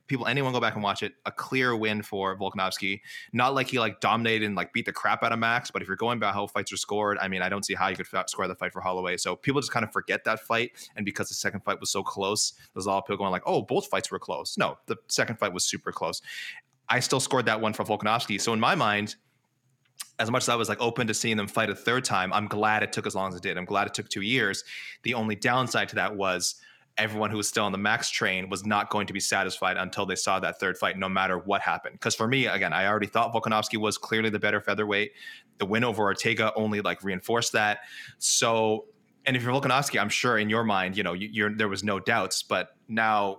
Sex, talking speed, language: male, 265 wpm, English